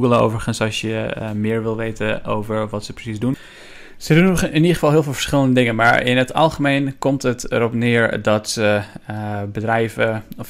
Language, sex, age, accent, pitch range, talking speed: Dutch, male, 20-39, Dutch, 110-125 Hz, 190 wpm